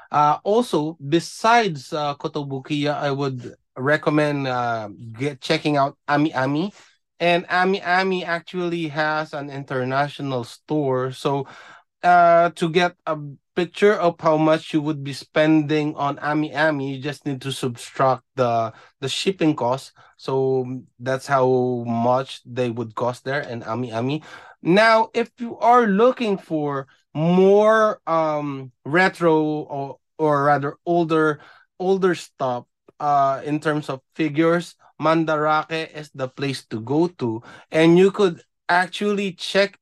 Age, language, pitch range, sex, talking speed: 20-39, Filipino, 130-165 Hz, male, 135 wpm